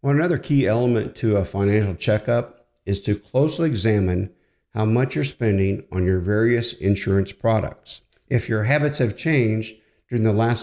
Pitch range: 105-125 Hz